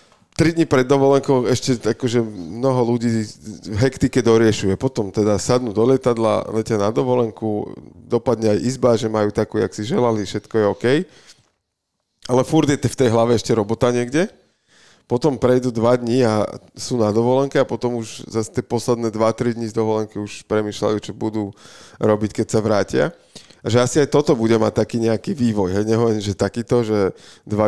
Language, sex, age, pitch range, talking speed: Slovak, male, 20-39, 105-120 Hz, 175 wpm